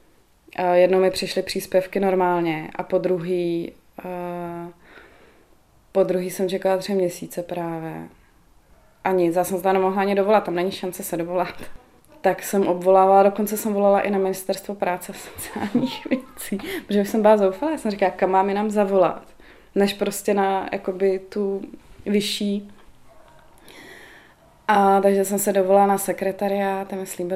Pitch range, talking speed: 180-195 Hz, 150 wpm